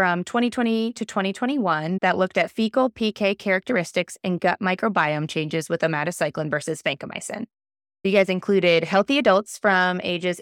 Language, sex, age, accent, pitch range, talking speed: English, female, 20-39, American, 160-195 Hz, 145 wpm